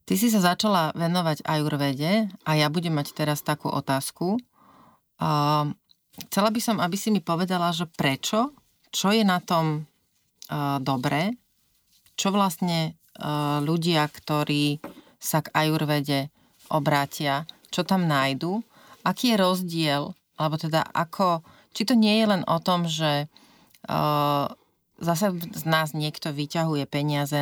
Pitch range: 145-175 Hz